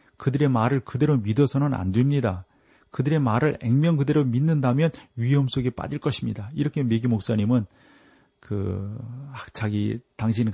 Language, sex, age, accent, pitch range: Korean, male, 40-59, native, 105-135 Hz